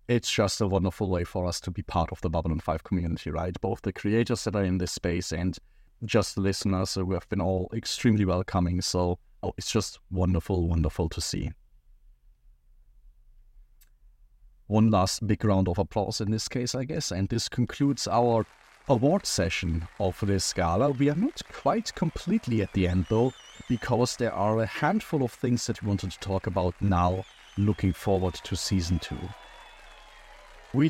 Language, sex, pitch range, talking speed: English, male, 95-120 Hz, 175 wpm